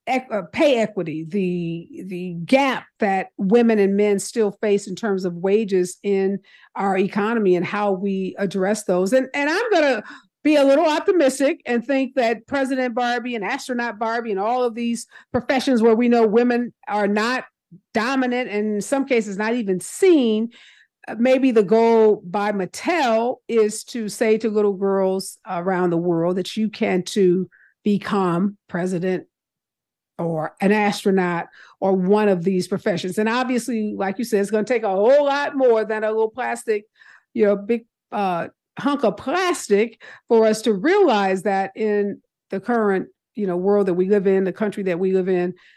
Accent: American